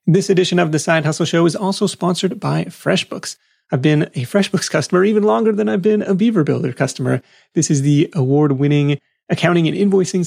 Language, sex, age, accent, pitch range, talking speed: English, male, 30-49, American, 150-190 Hz, 200 wpm